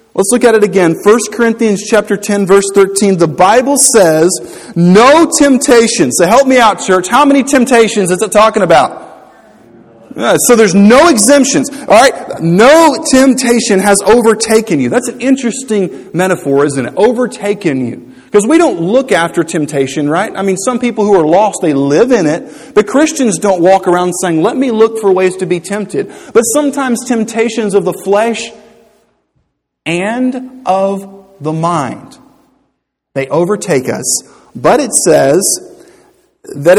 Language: English